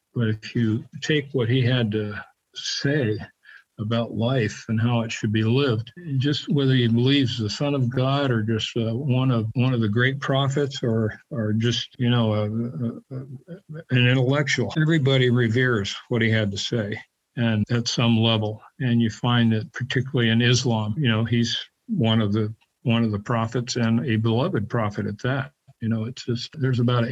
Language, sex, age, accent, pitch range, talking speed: English, male, 50-69, American, 110-130 Hz, 190 wpm